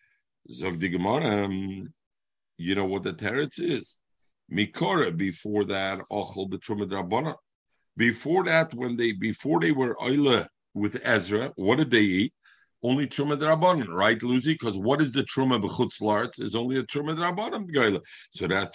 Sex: male